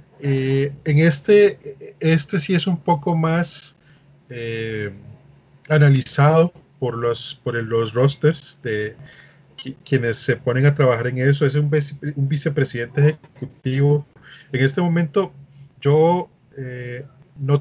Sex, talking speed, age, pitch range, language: male, 125 wpm, 30-49, 130-155 Hz, Spanish